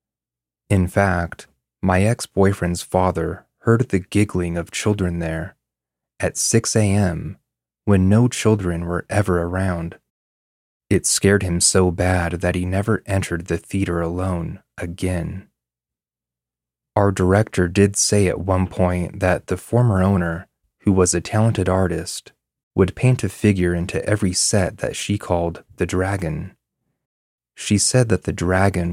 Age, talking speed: 30-49, 135 wpm